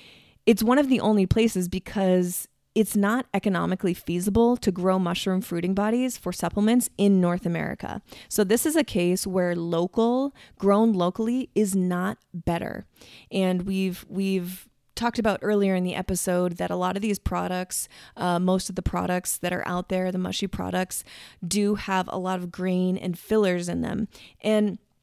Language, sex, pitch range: English, female, 180-215 Hz